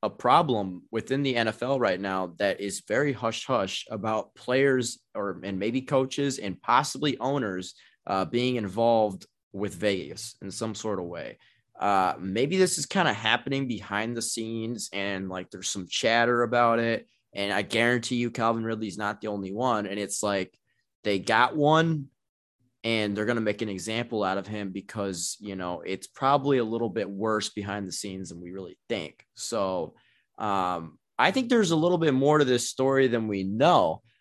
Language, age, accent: English, 20-39, American